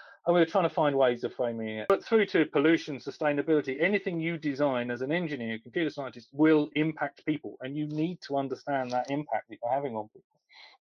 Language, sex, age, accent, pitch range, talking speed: English, male, 40-59, British, 130-190 Hz, 210 wpm